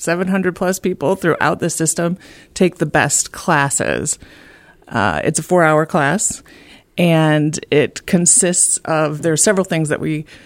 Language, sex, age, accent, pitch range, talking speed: English, female, 30-49, American, 150-180 Hz, 140 wpm